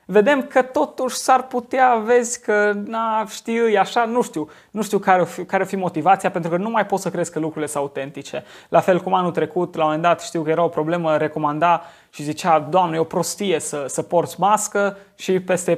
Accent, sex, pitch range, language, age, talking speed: native, male, 160-200 Hz, Romanian, 20-39, 215 wpm